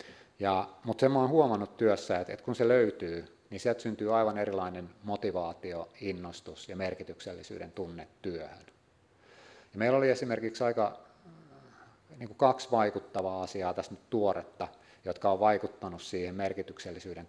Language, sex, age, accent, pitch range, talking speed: English, male, 30-49, Finnish, 90-110 Hz, 130 wpm